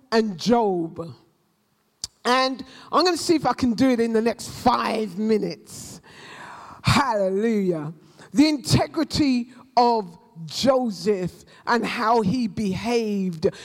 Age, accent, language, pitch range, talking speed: 50-69, British, English, 215-295 Hz, 115 wpm